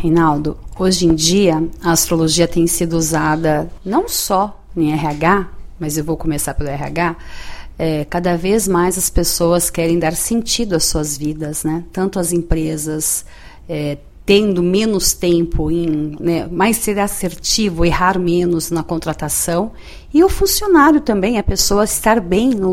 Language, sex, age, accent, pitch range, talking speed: Portuguese, female, 40-59, Brazilian, 170-235 Hz, 155 wpm